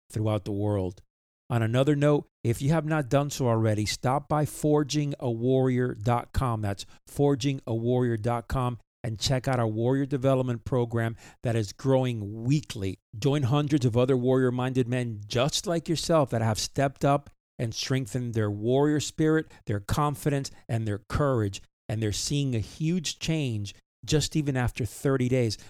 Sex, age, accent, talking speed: male, 50-69, American, 145 wpm